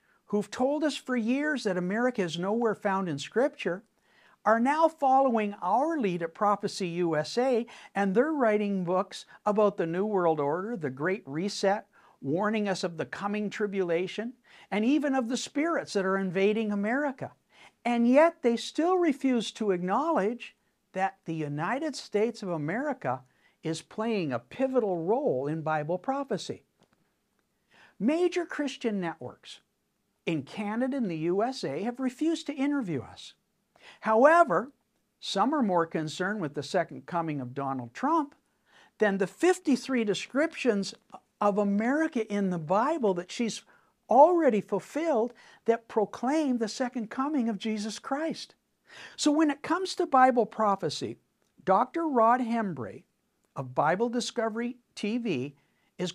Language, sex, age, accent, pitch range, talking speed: English, male, 60-79, American, 190-260 Hz, 140 wpm